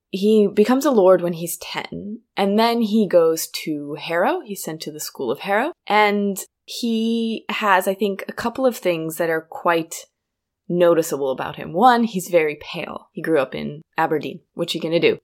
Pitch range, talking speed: 165-215 Hz, 195 wpm